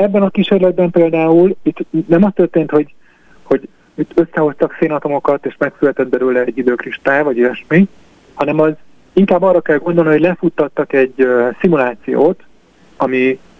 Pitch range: 130-165 Hz